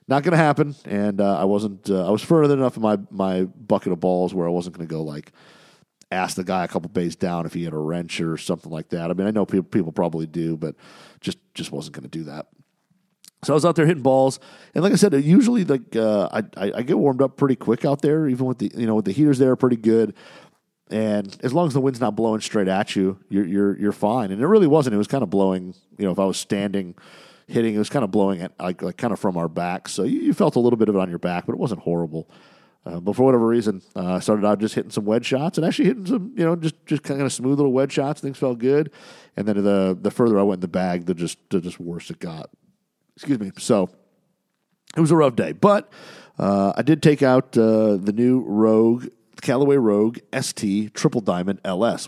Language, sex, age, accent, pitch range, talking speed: English, male, 40-59, American, 95-140 Hz, 255 wpm